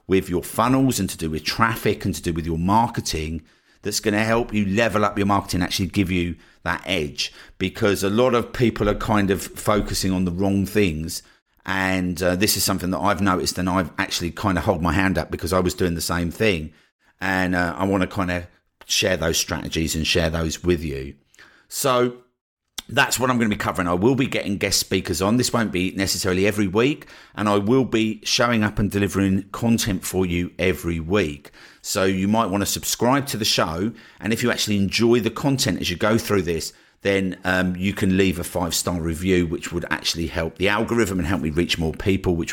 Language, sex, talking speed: English, male, 220 wpm